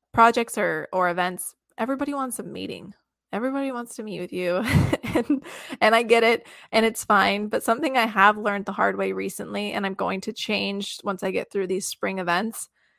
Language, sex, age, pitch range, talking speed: English, female, 20-39, 190-225 Hz, 200 wpm